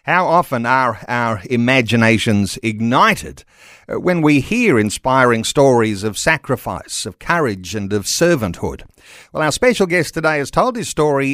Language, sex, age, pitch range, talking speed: English, male, 50-69, 125-165 Hz, 145 wpm